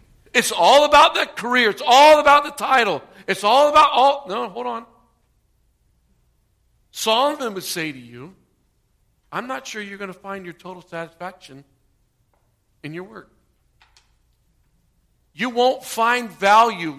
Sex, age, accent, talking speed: male, 50-69, American, 140 wpm